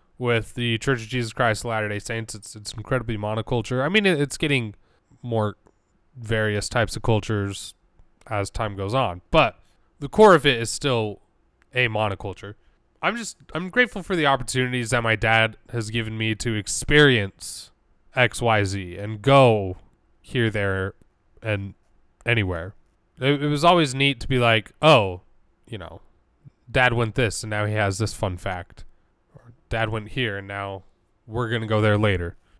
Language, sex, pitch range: English, male, 100-125 Hz